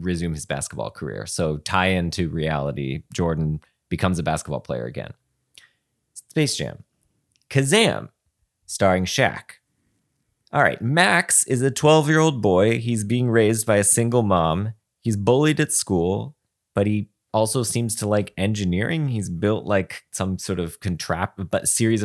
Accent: American